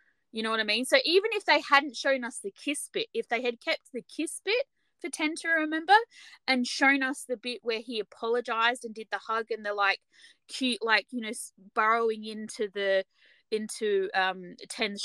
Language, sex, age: English, female, 20-39